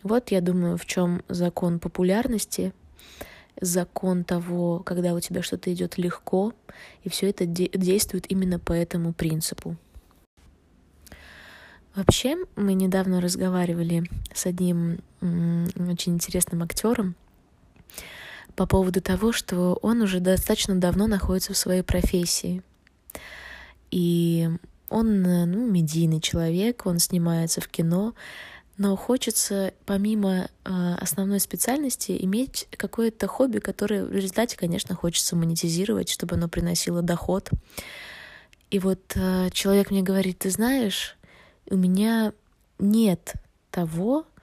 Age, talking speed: 20-39, 115 wpm